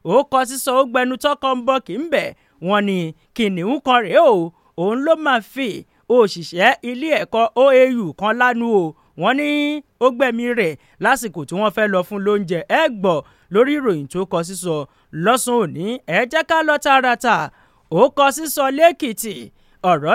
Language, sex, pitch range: English, male, 205-280 Hz